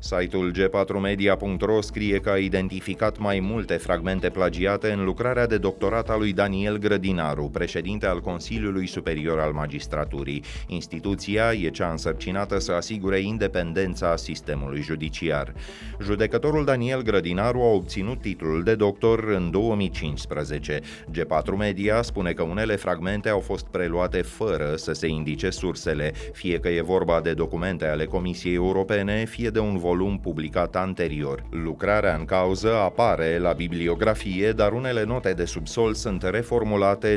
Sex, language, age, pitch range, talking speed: male, Romanian, 30-49, 85-105 Hz, 140 wpm